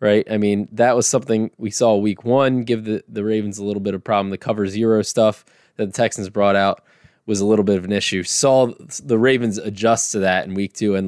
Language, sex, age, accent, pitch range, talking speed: English, male, 20-39, American, 100-120 Hz, 245 wpm